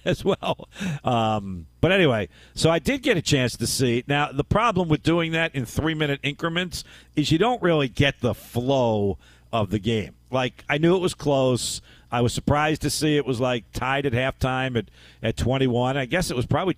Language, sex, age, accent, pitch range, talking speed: English, male, 50-69, American, 110-145 Hz, 205 wpm